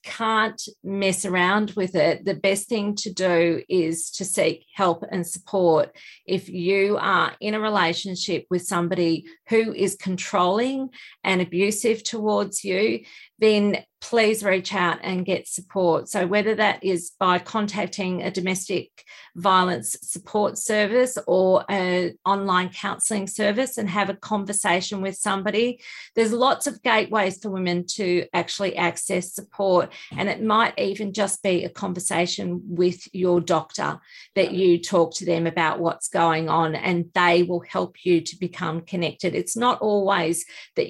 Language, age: English, 40-59